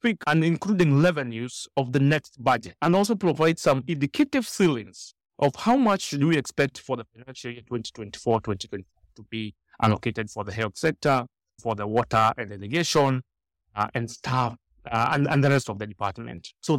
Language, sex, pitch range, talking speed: English, male, 115-155 Hz, 175 wpm